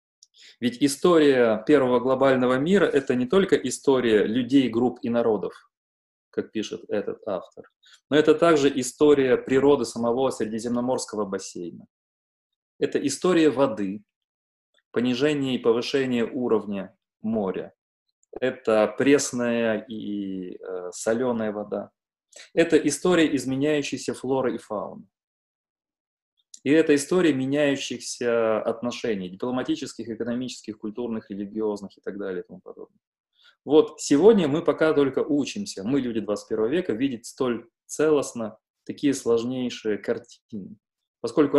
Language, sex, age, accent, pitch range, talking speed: Russian, male, 20-39, native, 115-150 Hz, 110 wpm